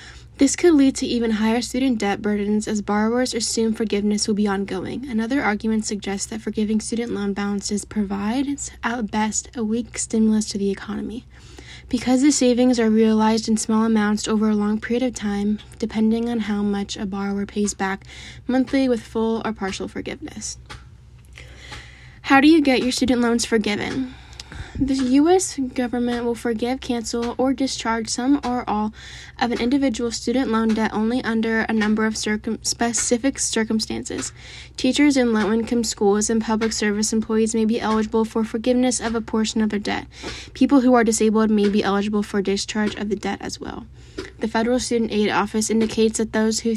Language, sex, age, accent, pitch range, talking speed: English, female, 10-29, American, 210-240 Hz, 175 wpm